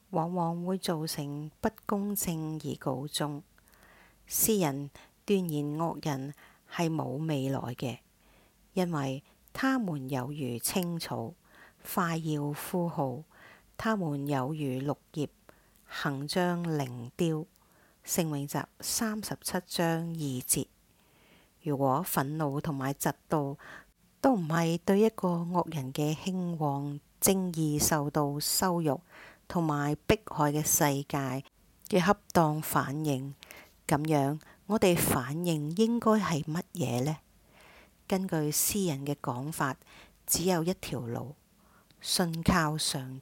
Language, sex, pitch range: English, female, 145-180 Hz